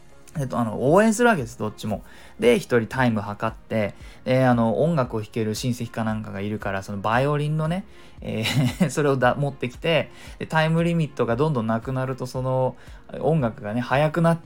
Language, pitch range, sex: Japanese, 115-190 Hz, male